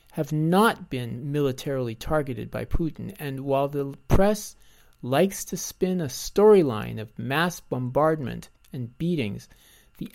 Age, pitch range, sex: 50-69, 125-170 Hz, male